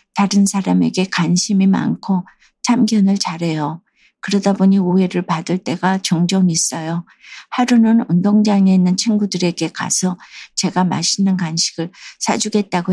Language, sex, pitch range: Korean, female, 170-205 Hz